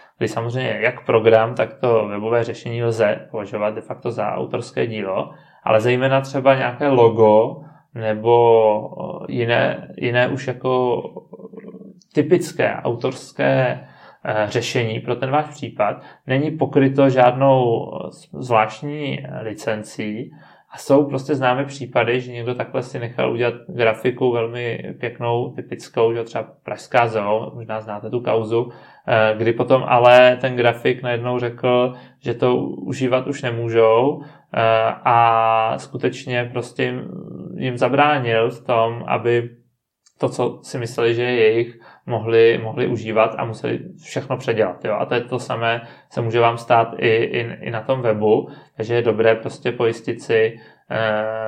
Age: 20-39